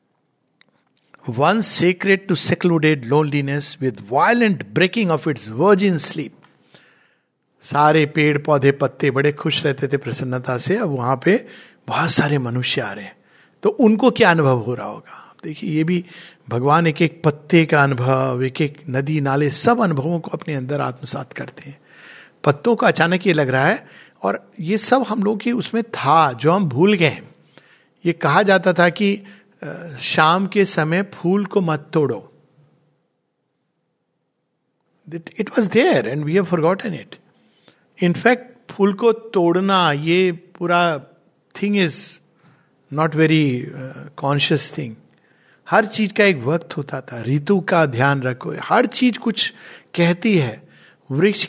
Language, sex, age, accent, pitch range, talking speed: Hindi, male, 60-79, native, 145-195 Hz, 140 wpm